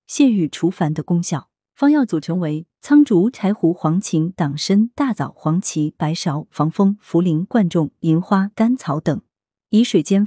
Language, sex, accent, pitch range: Chinese, female, native, 160-230 Hz